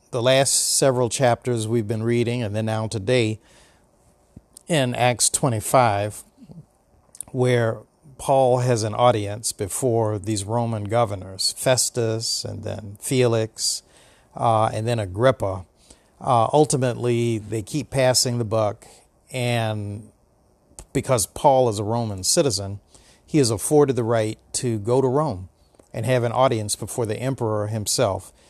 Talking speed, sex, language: 130 wpm, male, English